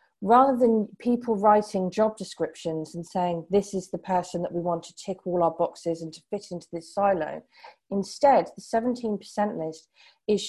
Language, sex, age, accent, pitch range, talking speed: English, female, 40-59, British, 180-225 Hz, 175 wpm